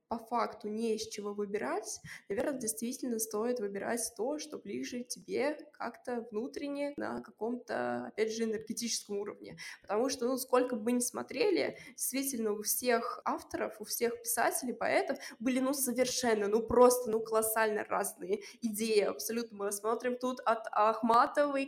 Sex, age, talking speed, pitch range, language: female, 20-39, 145 wpm, 215-260 Hz, Russian